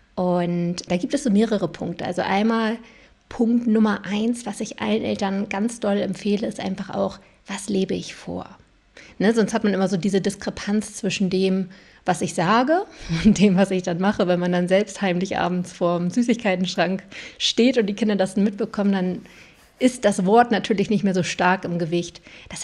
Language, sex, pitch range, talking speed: German, female, 190-225 Hz, 190 wpm